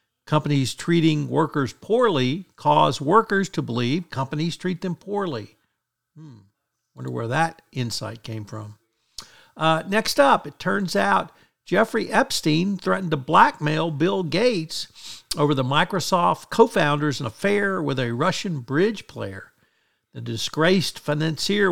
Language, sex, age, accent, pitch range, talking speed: English, male, 60-79, American, 125-175 Hz, 125 wpm